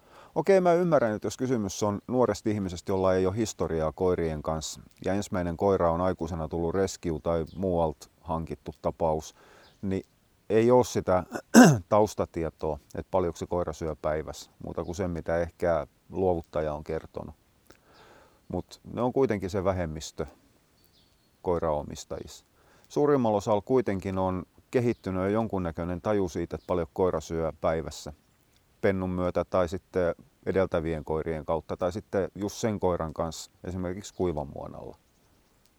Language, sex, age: Finnish, male, 30-49